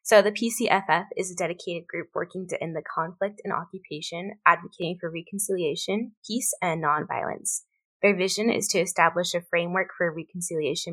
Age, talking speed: 20-39, 160 wpm